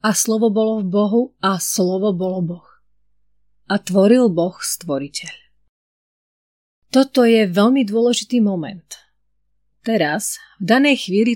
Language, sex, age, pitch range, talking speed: Slovak, female, 30-49, 180-220 Hz, 115 wpm